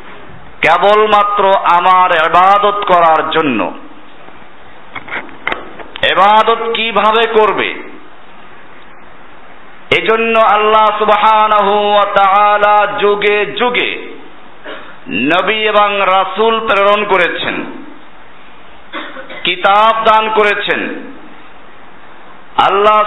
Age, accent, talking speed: 50-69, native, 50 wpm